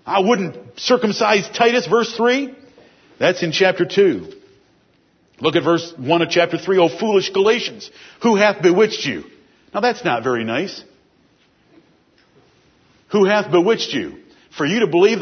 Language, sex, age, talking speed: English, male, 50-69, 145 wpm